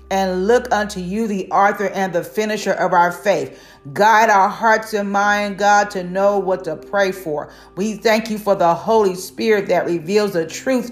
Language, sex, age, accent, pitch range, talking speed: English, female, 40-59, American, 190-235 Hz, 190 wpm